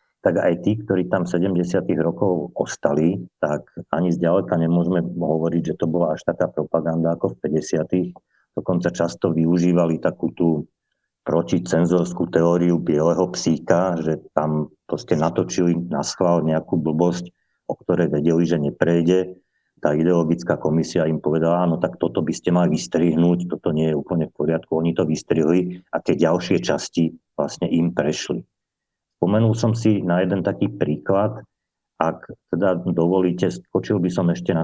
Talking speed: 150 wpm